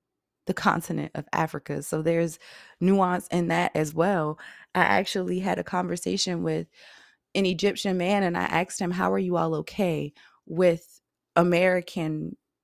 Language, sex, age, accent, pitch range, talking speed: English, female, 20-39, American, 145-180 Hz, 145 wpm